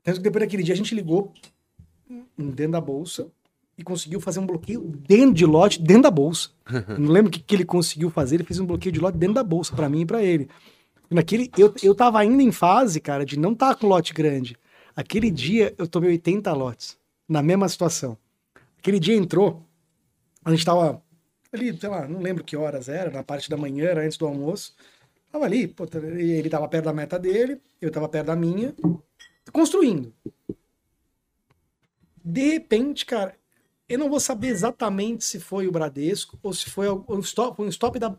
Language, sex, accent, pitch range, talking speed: Portuguese, male, Brazilian, 155-210 Hz, 190 wpm